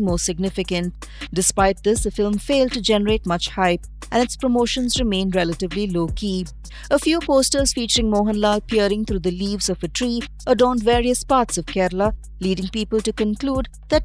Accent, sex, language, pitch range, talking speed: Indian, female, English, 185-235 Hz, 165 wpm